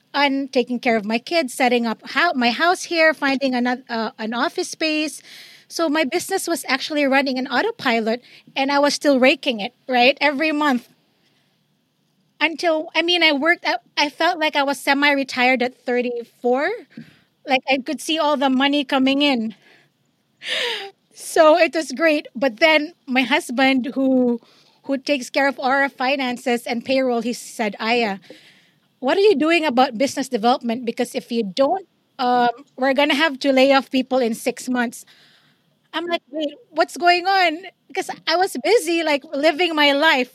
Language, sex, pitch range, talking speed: English, female, 250-315 Hz, 170 wpm